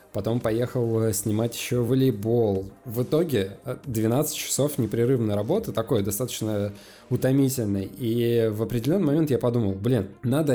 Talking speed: 125 wpm